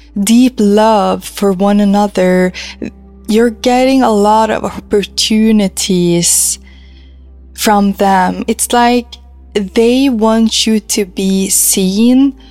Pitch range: 190-225 Hz